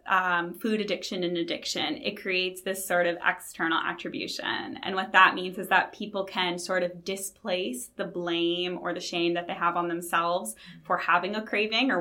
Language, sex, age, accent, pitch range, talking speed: English, female, 20-39, American, 175-195 Hz, 190 wpm